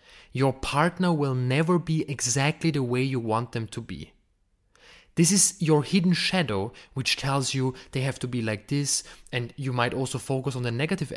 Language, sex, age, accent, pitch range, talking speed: English, male, 20-39, German, 125-160 Hz, 190 wpm